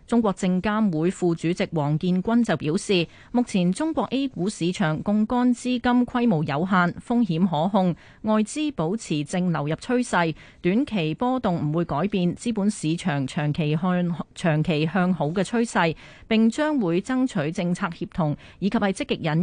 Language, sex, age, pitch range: Chinese, female, 30-49, 165-220 Hz